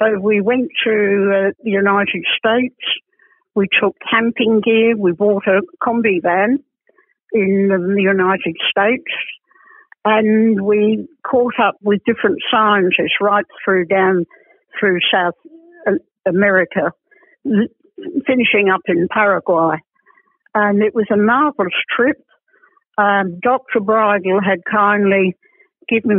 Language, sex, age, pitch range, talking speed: English, female, 60-79, 195-260 Hz, 110 wpm